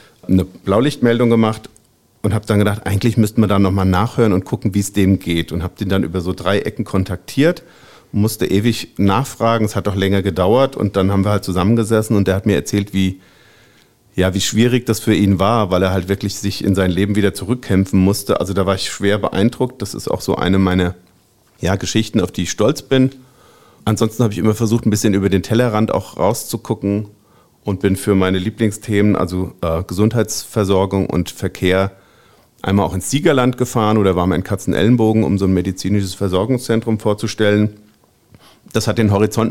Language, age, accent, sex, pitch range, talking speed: German, 50-69, German, male, 95-110 Hz, 195 wpm